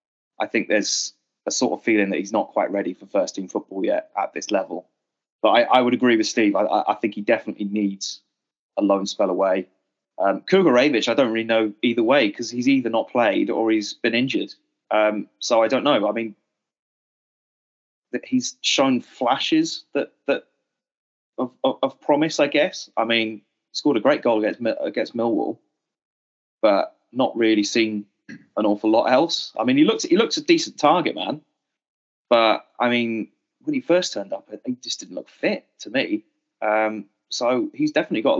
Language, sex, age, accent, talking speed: English, male, 20-39, British, 190 wpm